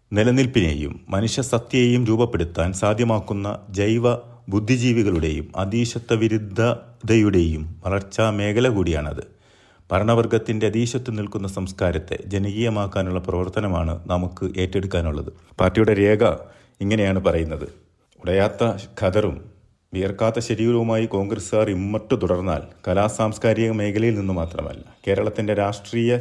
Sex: male